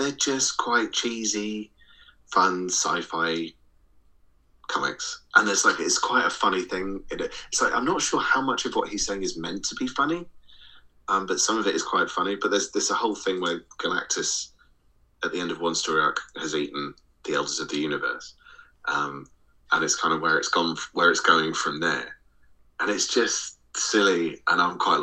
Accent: British